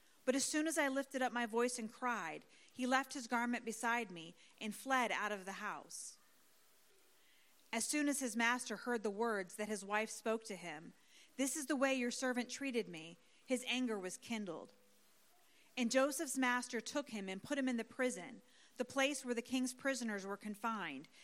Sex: female